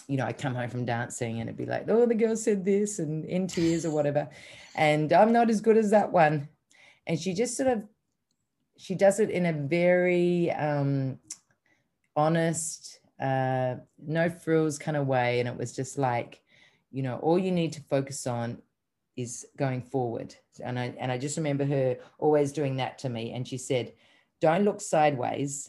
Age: 30-49